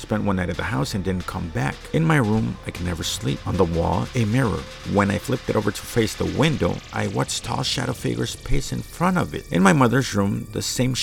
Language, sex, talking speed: English, male, 255 wpm